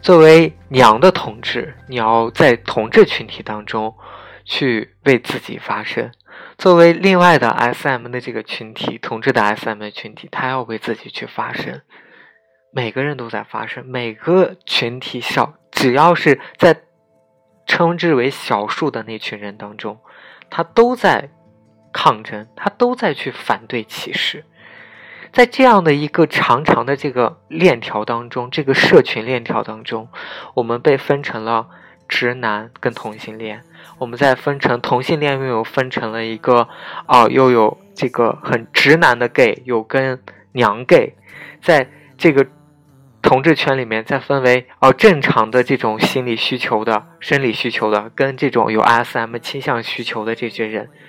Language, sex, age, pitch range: Chinese, male, 20-39, 115-150 Hz